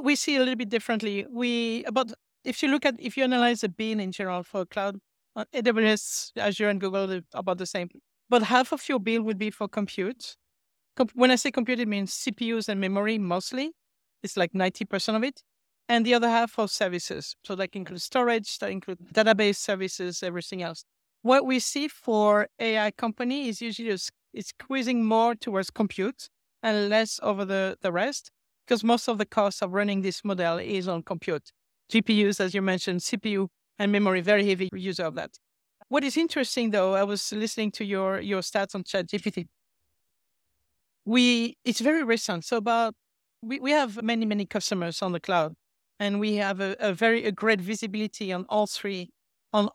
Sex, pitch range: female, 190-235 Hz